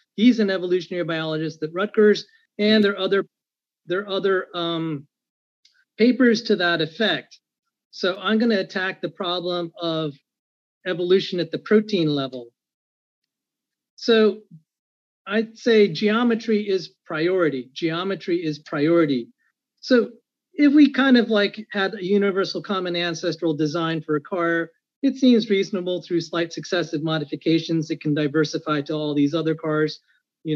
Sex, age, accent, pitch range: male, 40-59, American, 155-210 Hz